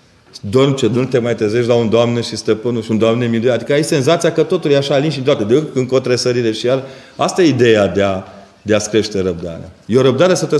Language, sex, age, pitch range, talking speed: Romanian, male, 30-49, 115-145 Hz, 255 wpm